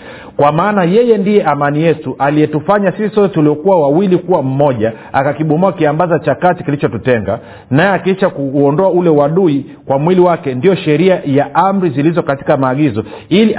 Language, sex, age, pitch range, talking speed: Swahili, male, 50-69, 135-180 Hz, 145 wpm